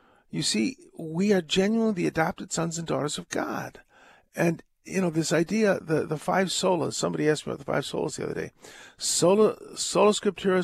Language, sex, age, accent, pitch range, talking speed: English, male, 50-69, American, 150-195 Hz, 190 wpm